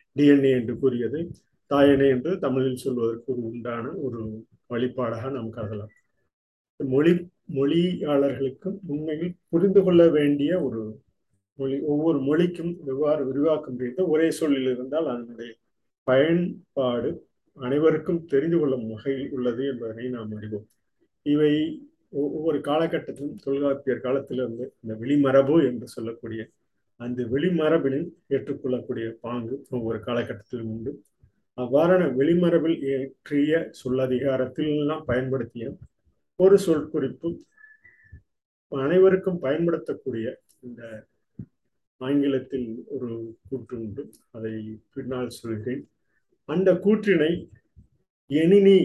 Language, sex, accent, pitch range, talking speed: Tamil, male, native, 120-155 Hz, 90 wpm